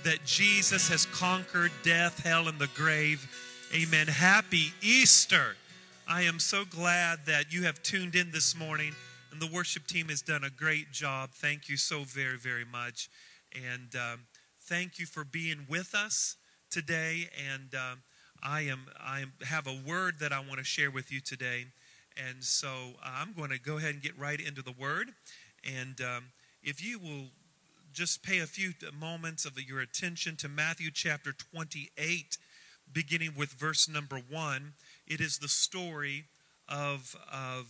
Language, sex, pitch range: English, male, 140-170 Hz